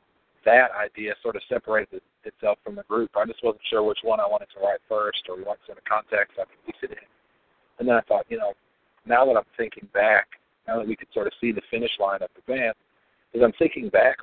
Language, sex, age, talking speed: English, male, 40-59, 245 wpm